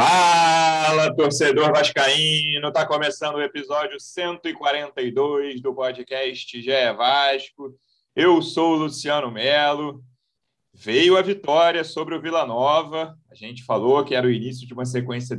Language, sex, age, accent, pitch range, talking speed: Portuguese, male, 30-49, Brazilian, 120-150 Hz, 135 wpm